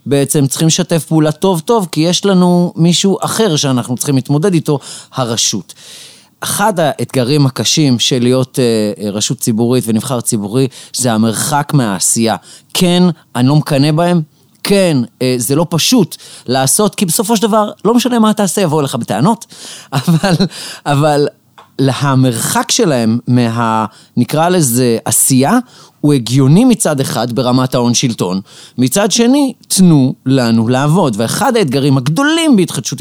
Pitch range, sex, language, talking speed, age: 125-180 Hz, male, Hebrew, 135 wpm, 30-49